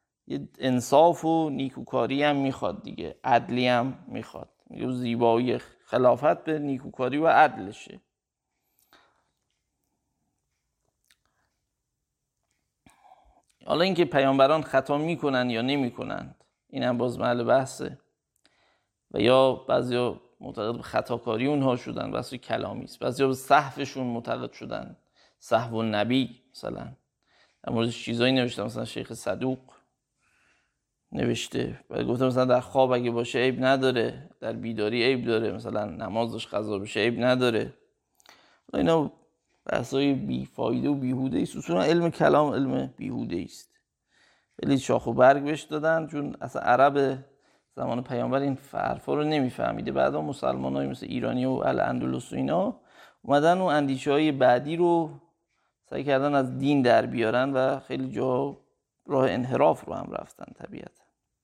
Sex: male